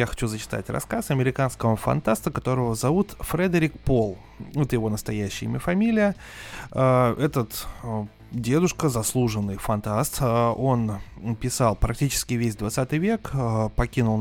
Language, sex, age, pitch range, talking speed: Russian, male, 20-39, 110-135 Hz, 105 wpm